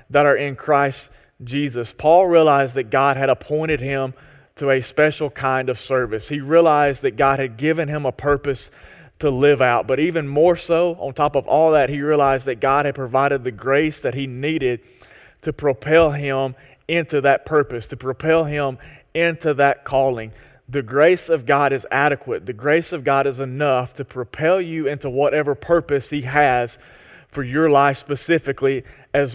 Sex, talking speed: male, 180 wpm